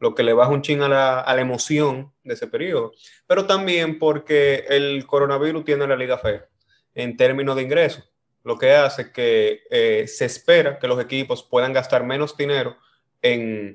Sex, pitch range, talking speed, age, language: male, 135-195 Hz, 185 wpm, 20-39, Spanish